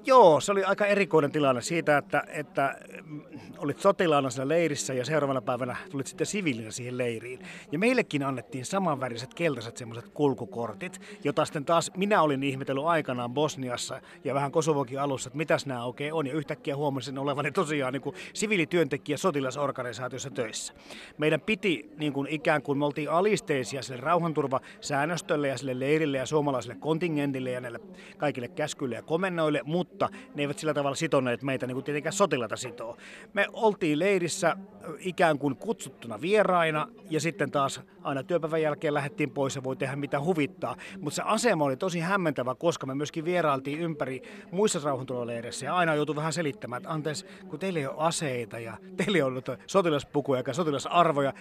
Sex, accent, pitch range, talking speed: male, native, 135-170 Hz, 165 wpm